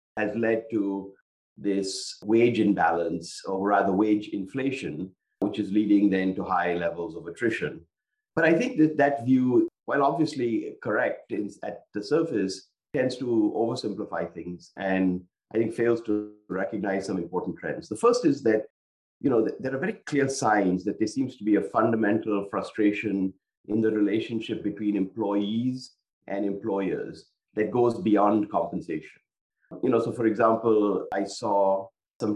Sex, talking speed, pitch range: male, 150 wpm, 95-115 Hz